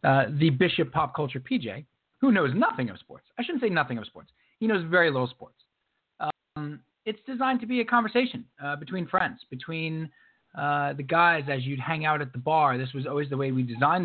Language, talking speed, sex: English, 215 wpm, male